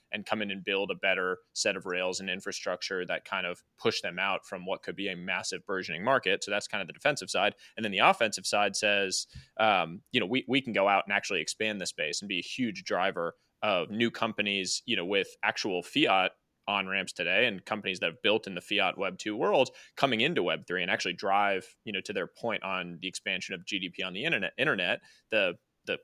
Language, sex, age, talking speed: English, male, 20-39, 235 wpm